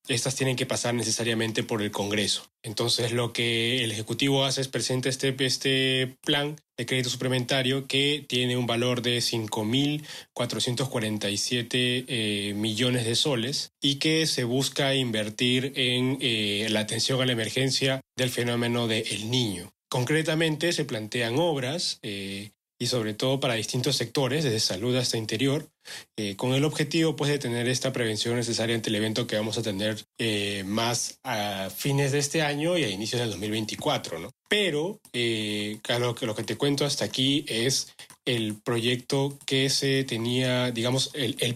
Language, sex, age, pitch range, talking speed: Spanish, male, 30-49, 115-140 Hz, 160 wpm